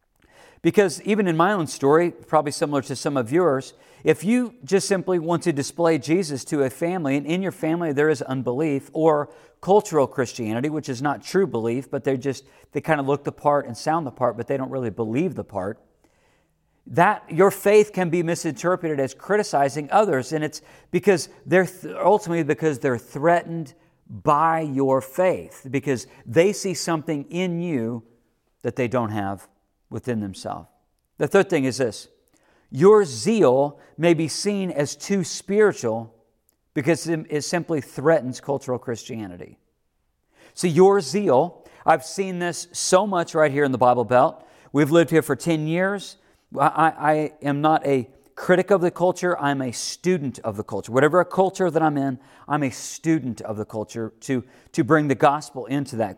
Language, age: English, 50-69